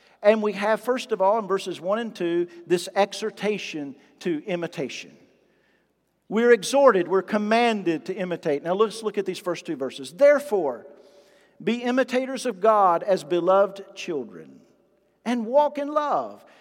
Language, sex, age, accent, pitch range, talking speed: English, male, 50-69, American, 175-215 Hz, 150 wpm